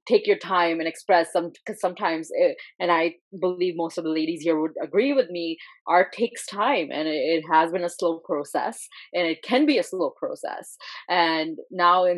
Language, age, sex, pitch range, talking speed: English, 20-39, female, 160-190 Hz, 200 wpm